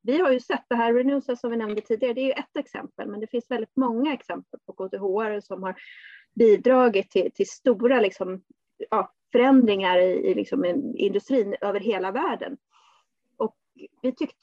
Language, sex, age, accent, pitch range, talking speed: Swedish, female, 30-49, native, 210-275 Hz, 185 wpm